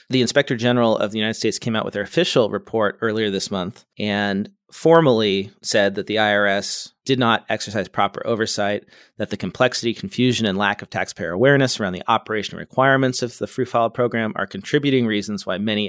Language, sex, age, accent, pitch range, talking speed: English, male, 30-49, American, 100-125 Hz, 190 wpm